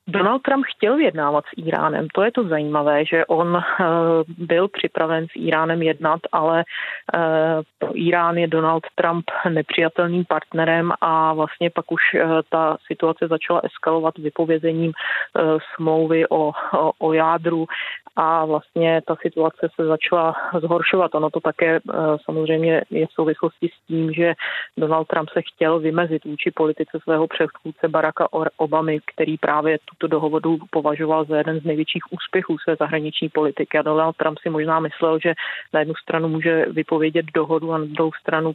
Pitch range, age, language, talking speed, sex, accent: 155-165 Hz, 30-49, Czech, 150 wpm, female, native